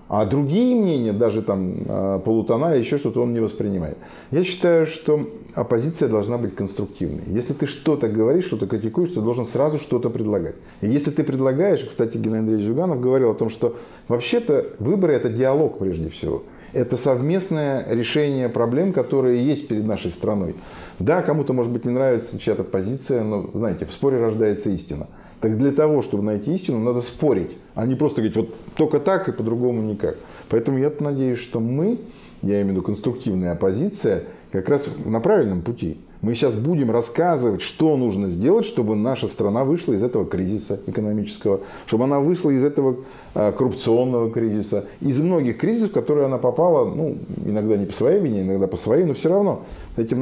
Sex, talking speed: male, 175 wpm